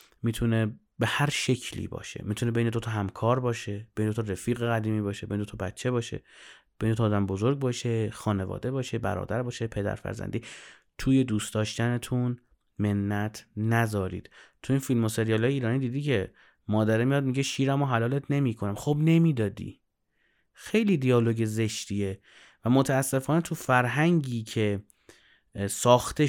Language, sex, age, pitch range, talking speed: Persian, male, 30-49, 110-140 Hz, 155 wpm